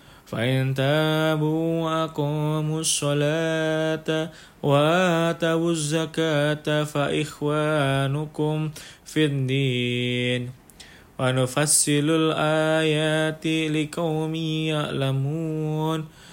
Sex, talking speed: male, 40 wpm